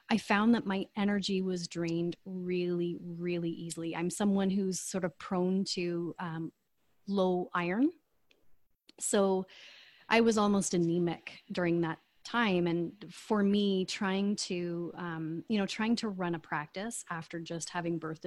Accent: American